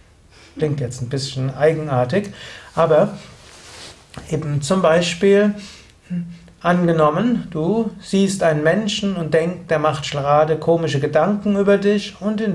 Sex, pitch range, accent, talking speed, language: male, 145-195 Hz, German, 120 wpm, German